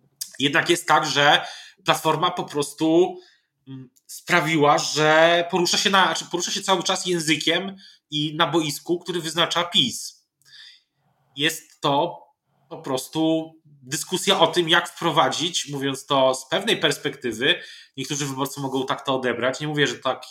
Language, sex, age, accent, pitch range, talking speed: Polish, male, 20-39, native, 140-175 Hz, 135 wpm